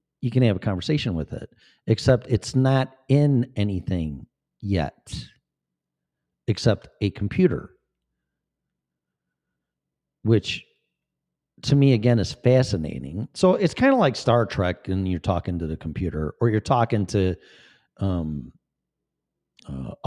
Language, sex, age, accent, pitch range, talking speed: English, male, 50-69, American, 80-120 Hz, 125 wpm